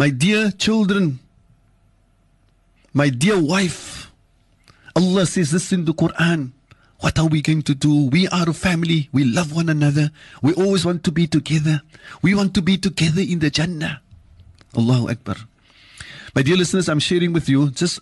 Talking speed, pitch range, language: 165 wpm, 130-190 Hz, English